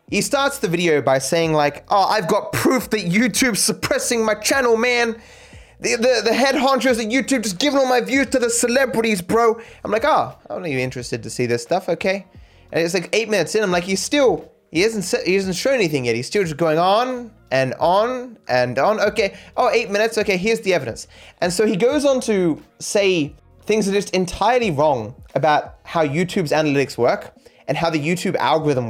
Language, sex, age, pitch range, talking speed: English, male, 20-39, 160-250 Hz, 215 wpm